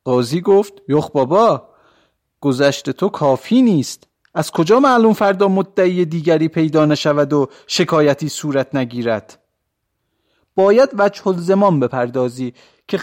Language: Persian